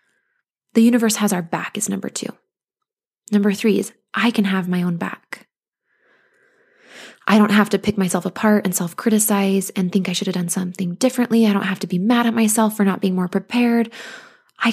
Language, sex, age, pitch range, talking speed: English, female, 20-39, 190-230 Hz, 195 wpm